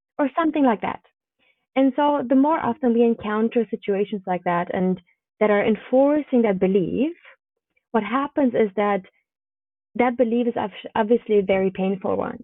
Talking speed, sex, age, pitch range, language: 155 wpm, female, 20-39, 195-245 Hz, English